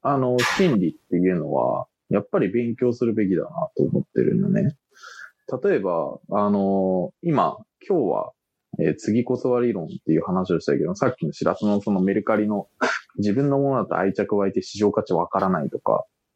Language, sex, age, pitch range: Japanese, male, 20-39, 95-140 Hz